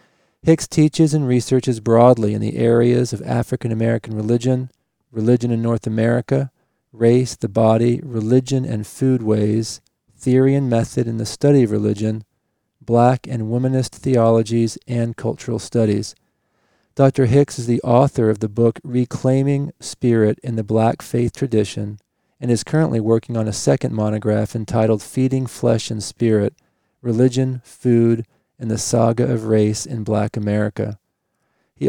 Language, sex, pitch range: English, male, 110-125 Hz